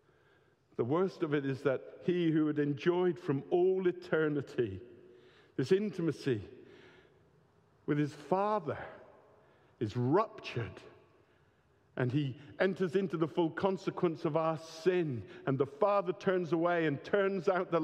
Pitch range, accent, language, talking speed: 140-175 Hz, British, English, 130 wpm